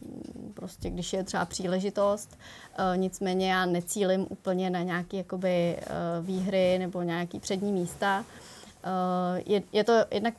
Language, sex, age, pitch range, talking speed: Czech, female, 20-39, 180-205 Hz, 110 wpm